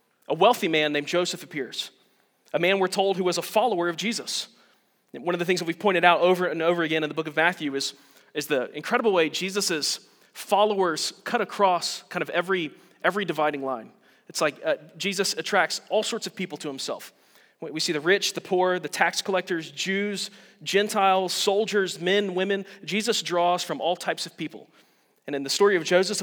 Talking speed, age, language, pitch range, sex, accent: 200 wpm, 30-49, English, 160-205 Hz, male, American